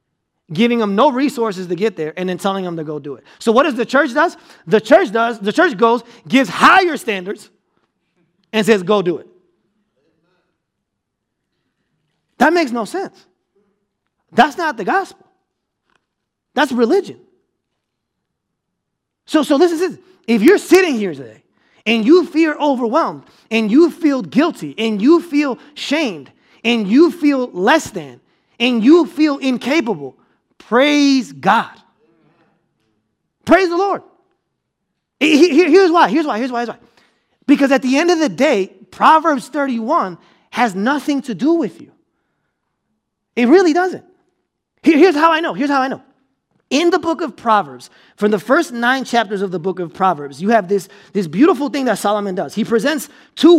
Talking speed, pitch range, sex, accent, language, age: 155 wpm, 210-315 Hz, male, American, English, 30-49